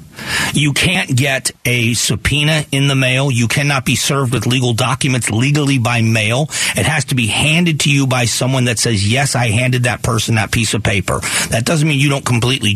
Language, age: English, 40-59